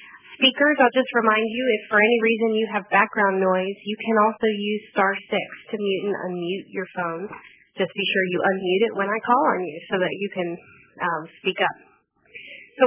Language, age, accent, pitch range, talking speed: English, 30-49, American, 180-215 Hz, 205 wpm